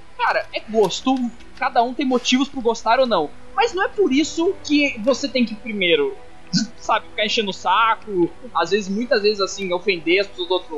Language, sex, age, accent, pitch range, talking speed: Portuguese, male, 20-39, Brazilian, 200-330 Hz, 200 wpm